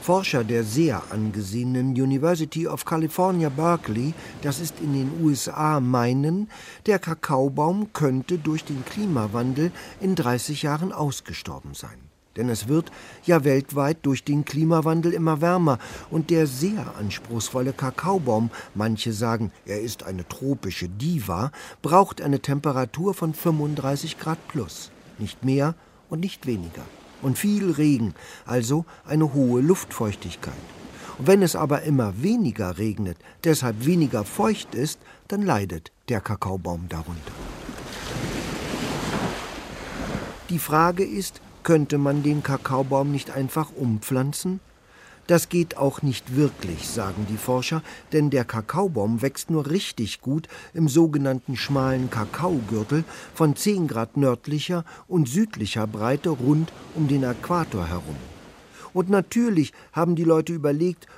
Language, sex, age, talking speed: German, male, 50-69, 125 wpm